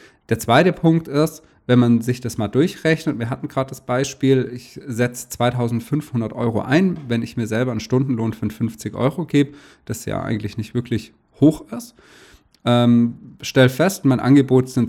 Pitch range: 110-145 Hz